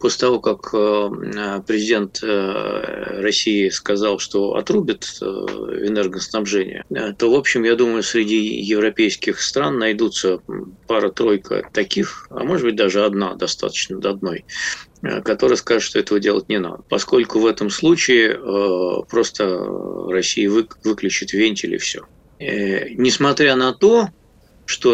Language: Russian